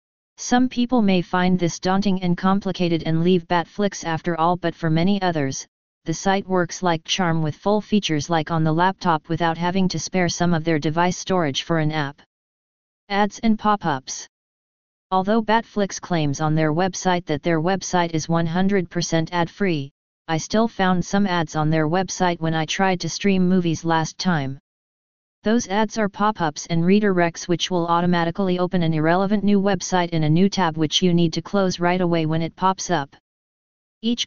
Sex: female